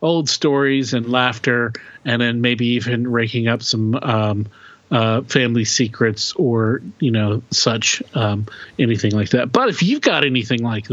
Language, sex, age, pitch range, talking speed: English, male, 40-59, 120-140 Hz, 160 wpm